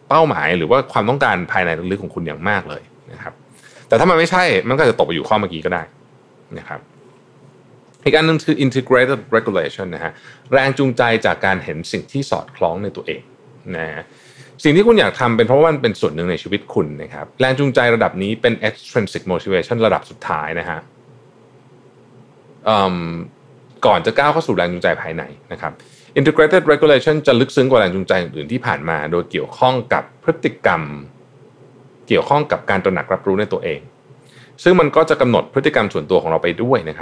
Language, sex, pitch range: Thai, male, 100-140 Hz